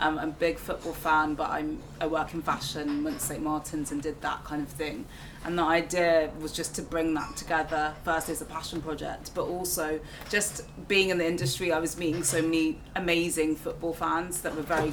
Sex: female